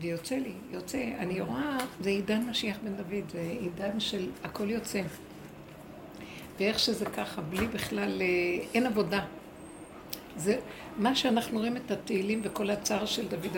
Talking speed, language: 140 wpm, Hebrew